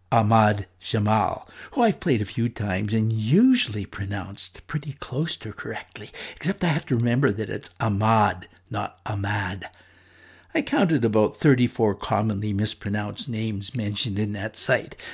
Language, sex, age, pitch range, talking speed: English, male, 60-79, 100-125 Hz, 145 wpm